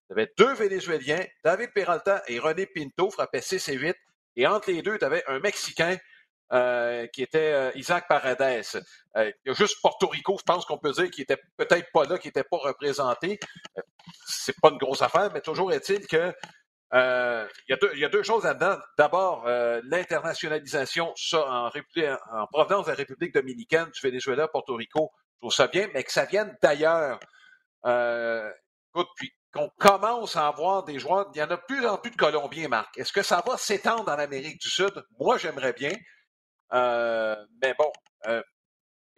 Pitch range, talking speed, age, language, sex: 135-200 Hz, 190 wpm, 50-69, French, male